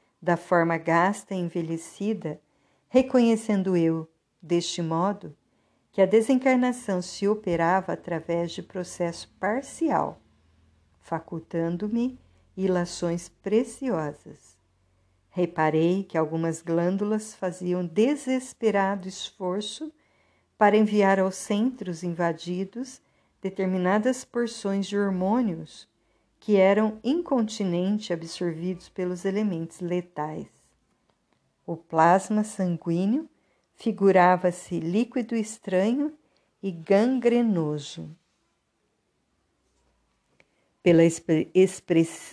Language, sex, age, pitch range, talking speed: Portuguese, female, 50-69, 170-215 Hz, 75 wpm